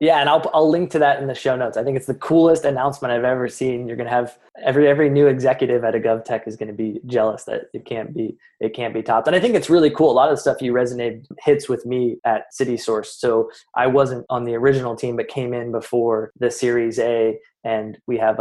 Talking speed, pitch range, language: 255 wpm, 110-130 Hz, English